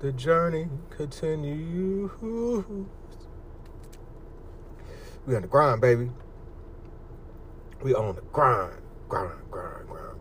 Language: English